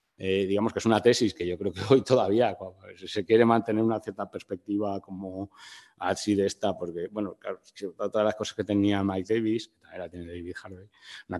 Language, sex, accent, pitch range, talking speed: Spanish, male, Spanish, 95-110 Hz, 195 wpm